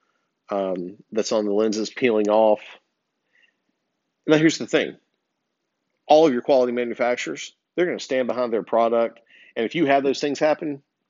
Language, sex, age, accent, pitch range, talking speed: English, male, 50-69, American, 105-130 Hz, 160 wpm